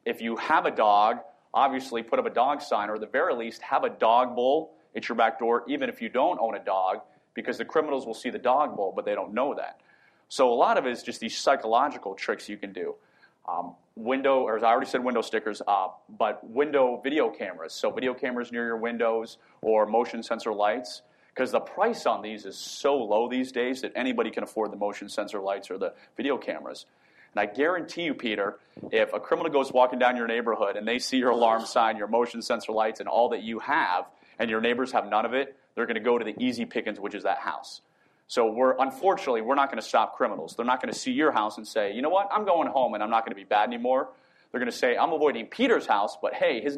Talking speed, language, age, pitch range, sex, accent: 250 wpm, English, 30-49, 110-135 Hz, male, American